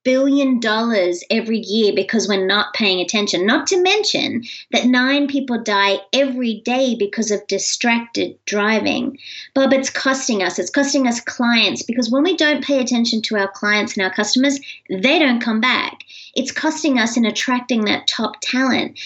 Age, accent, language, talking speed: 30-49, Australian, English, 170 wpm